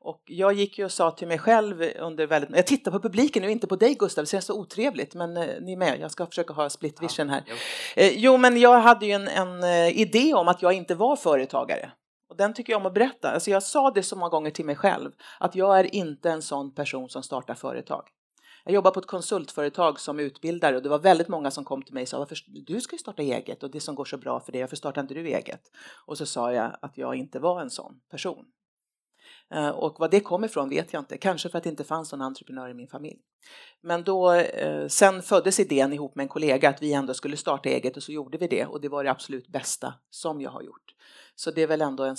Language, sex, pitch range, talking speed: Swedish, female, 140-195 Hz, 255 wpm